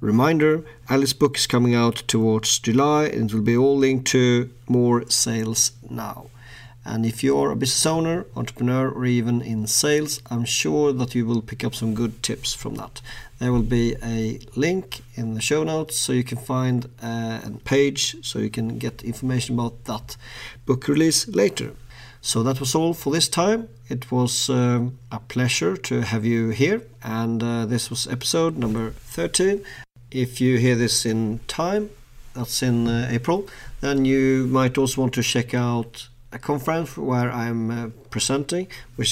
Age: 40-59